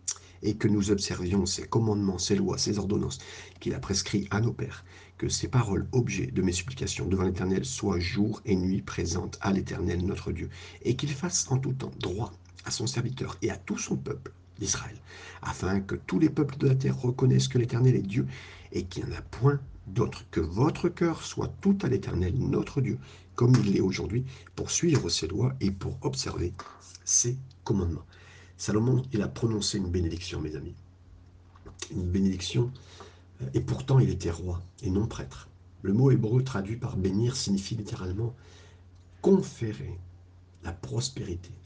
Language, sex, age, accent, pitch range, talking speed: French, male, 50-69, French, 90-125 Hz, 180 wpm